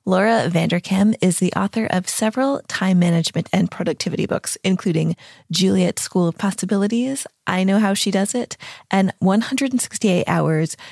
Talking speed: 145 wpm